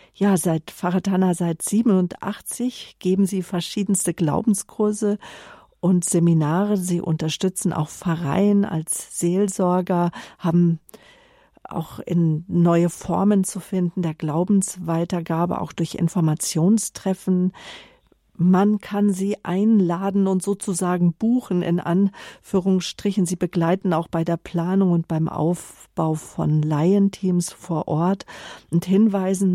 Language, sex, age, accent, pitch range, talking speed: German, female, 50-69, German, 165-190 Hz, 110 wpm